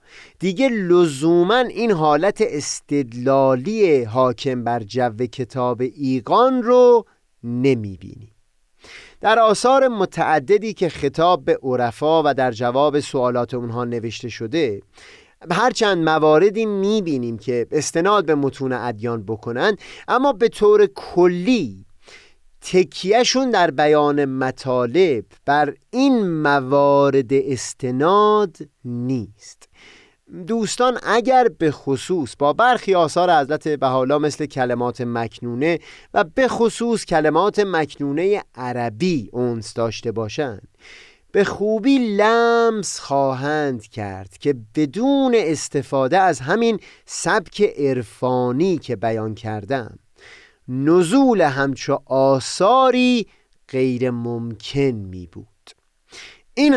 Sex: male